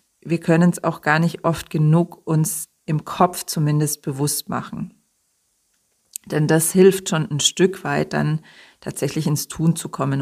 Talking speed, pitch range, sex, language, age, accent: 160 wpm, 140-165 Hz, female, German, 40-59, German